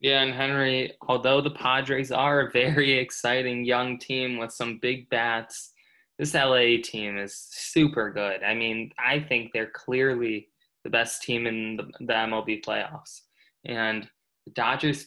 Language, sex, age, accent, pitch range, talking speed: English, male, 20-39, American, 110-125 Hz, 150 wpm